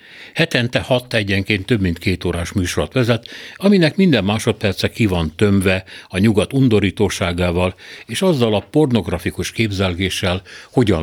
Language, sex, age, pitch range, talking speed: Hungarian, male, 60-79, 90-115 Hz, 130 wpm